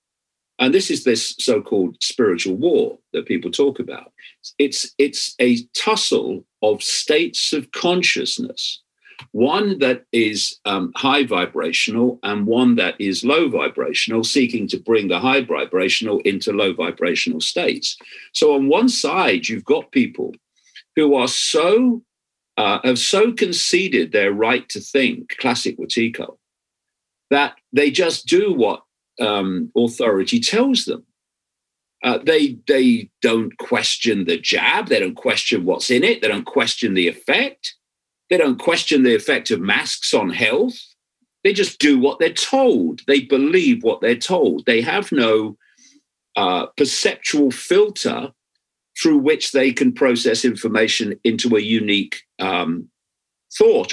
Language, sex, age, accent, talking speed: English, male, 50-69, British, 140 wpm